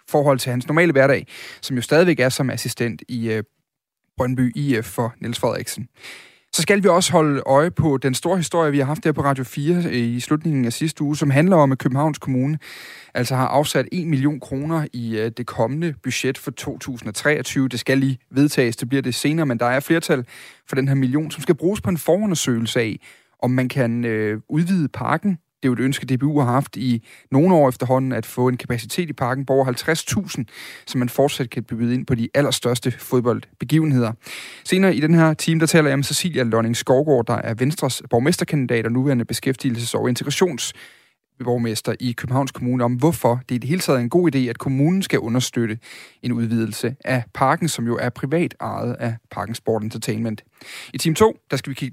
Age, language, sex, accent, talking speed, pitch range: 30-49, Danish, male, native, 205 wpm, 120-150 Hz